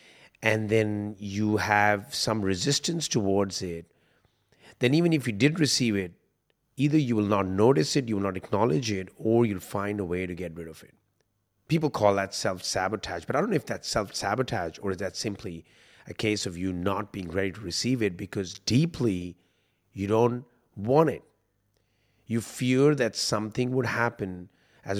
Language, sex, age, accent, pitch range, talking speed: English, male, 30-49, Indian, 100-125 Hz, 180 wpm